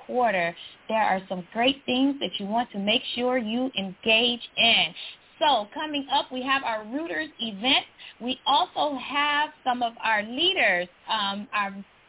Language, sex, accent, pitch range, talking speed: English, female, American, 225-285 Hz, 160 wpm